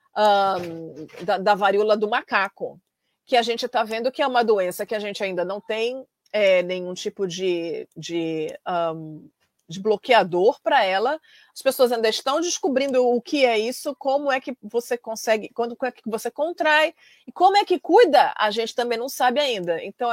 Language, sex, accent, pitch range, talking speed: Portuguese, female, Brazilian, 210-280 Hz, 190 wpm